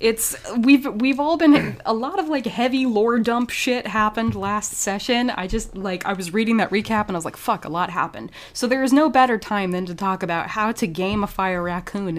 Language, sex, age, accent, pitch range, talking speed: English, female, 20-39, American, 175-230 Hz, 235 wpm